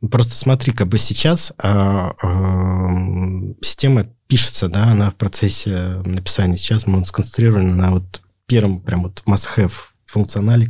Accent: native